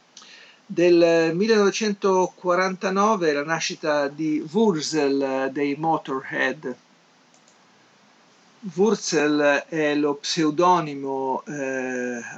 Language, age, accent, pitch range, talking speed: Italian, 50-69, native, 135-165 Hz, 65 wpm